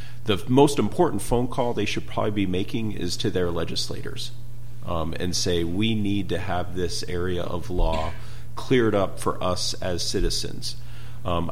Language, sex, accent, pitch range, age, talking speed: English, male, American, 90-120 Hz, 40-59, 165 wpm